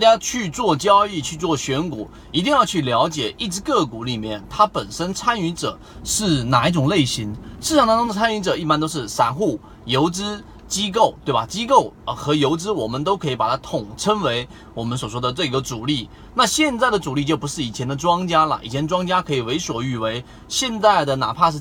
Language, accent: Chinese, native